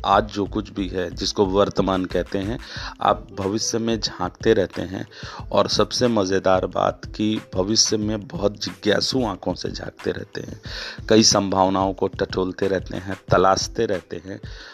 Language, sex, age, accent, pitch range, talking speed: Hindi, male, 30-49, native, 95-110 Hz, 155 wpm